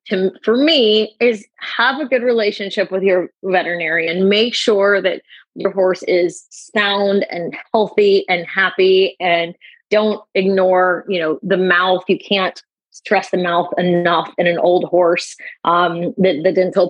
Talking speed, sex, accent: 155 wpm, female, American